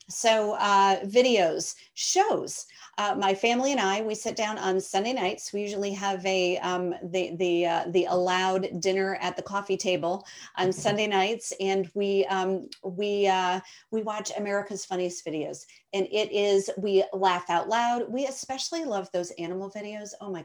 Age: 40-59